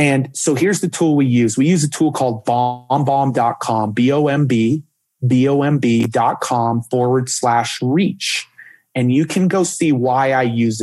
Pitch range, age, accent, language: 120-150 Hz, 30-49, American, English